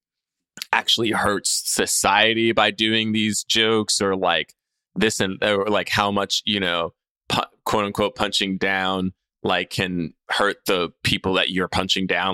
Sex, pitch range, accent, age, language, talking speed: male, 100-145 Hz, American, 20-39, English, 140 wpm